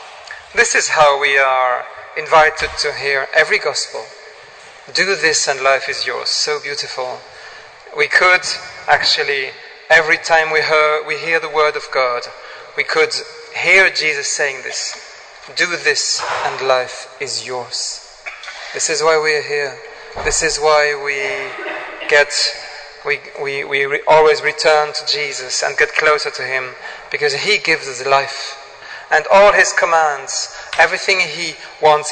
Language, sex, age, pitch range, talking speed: English, male, 40-59, 140-165 Hz, 145 wpm